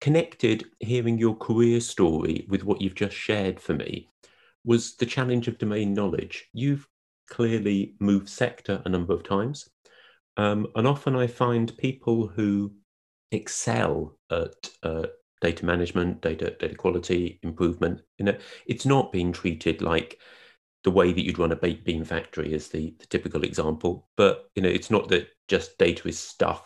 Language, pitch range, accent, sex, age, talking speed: English, 90-120 Hz, British, male, 40-59, 160 wpm